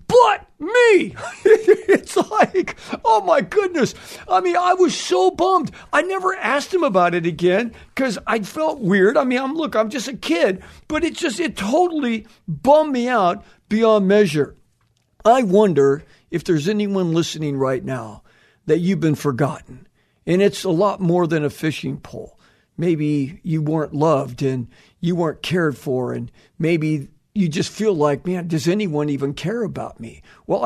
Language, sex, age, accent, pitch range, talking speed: English, male, 50-69, American, 170-260 Hz, 165 wpm